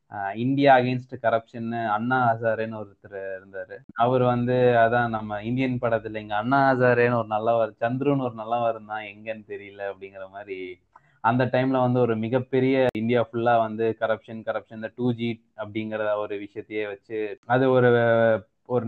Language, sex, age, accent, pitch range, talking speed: Tamil, male, 20-39, native, 110-160 Hz, 50 wpm